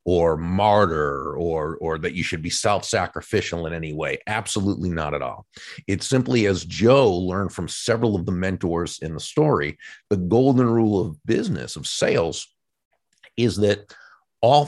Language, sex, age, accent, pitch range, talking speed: English, male, 50-69, American, 90-115 Hz, 160 wpm